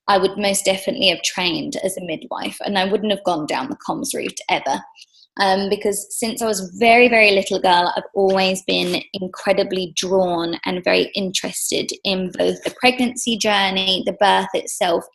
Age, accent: 20-39, British